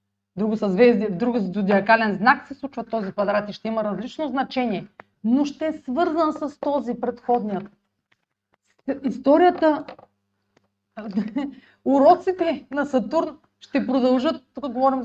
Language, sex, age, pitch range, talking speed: Bulgarian, female, 30-49, 195-280 Hz, 115 wpm